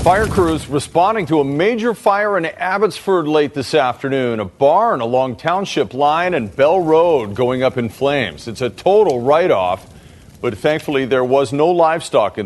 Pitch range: 125-170 Hz